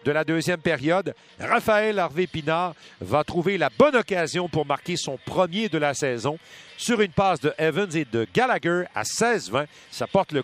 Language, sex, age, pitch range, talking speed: French, male, 50-69, 160-205 Hz, 180 wpm